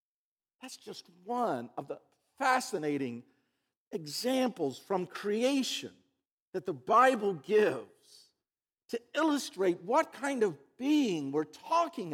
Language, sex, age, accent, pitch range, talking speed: English, male, 50-69, American, 195-295 Hz, 105 wpm